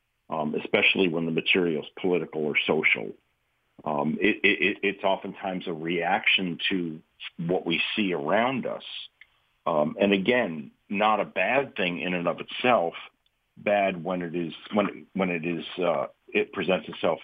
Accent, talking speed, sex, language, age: American, 155 wpm, male, English, 50-69